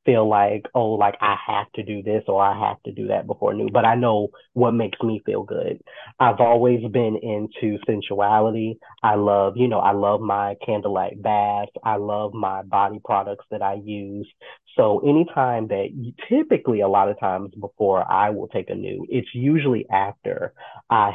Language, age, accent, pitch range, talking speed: English, 30-49, American, 100-120 Hz, 185 wpm